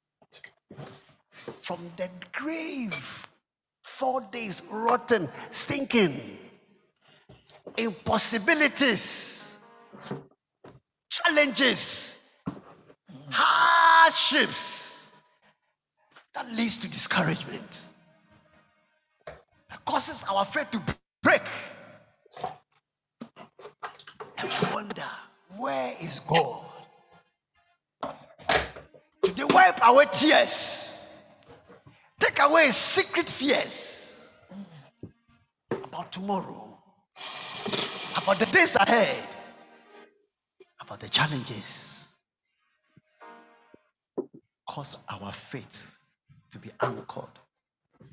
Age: 50-69